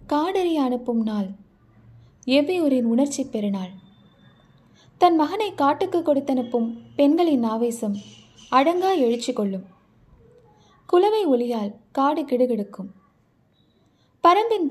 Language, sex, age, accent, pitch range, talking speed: Tamil, female, 20-39, native, 200-280 Hz, 80 wpm